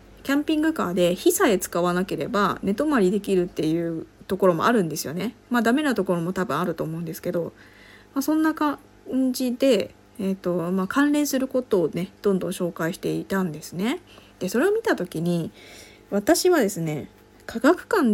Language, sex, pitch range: Japanese, female, 175-270 Hz